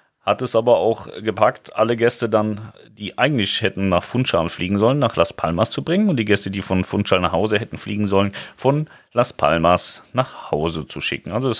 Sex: male